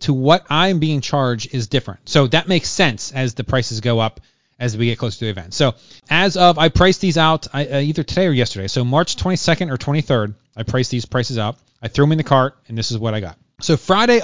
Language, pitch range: English, 120-170 Hz